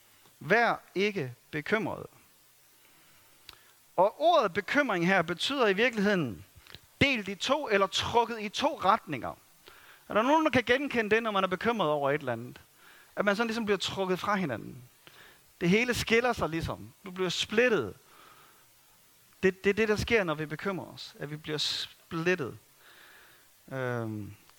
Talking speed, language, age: 155 wpm, Danish, 30-49